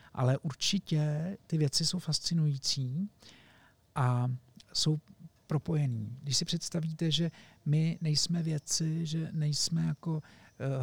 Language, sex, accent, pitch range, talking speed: Czech, male, native, 130-160 Hz, 110 wpm